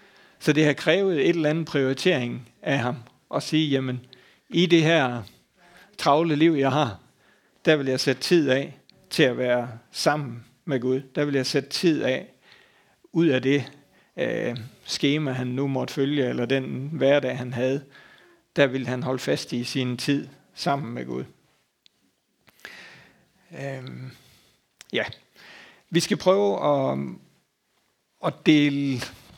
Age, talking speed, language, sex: 60-79, 140 wpm, Danish, male